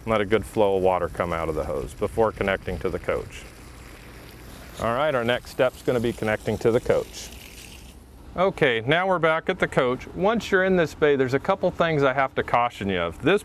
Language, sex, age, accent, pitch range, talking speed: English, male, 40-59, American, 100-140 Hz, 230 wpm